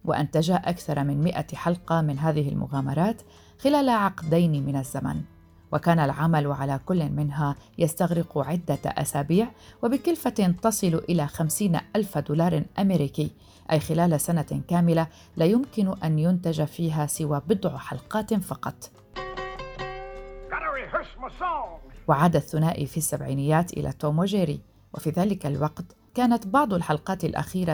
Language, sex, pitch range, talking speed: Arabic, female, 145-175 Hz, 115 wpm